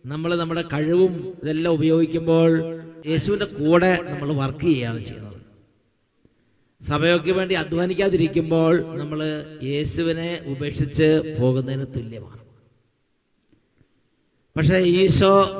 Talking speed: 90 wpm